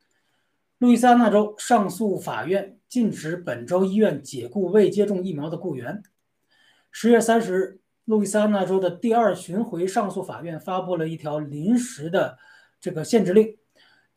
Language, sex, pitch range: Chinese, male, 180-220 Hz